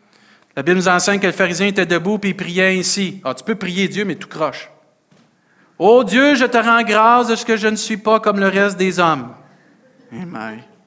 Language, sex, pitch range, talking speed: French, male, 120-195 Hz, 230 wpm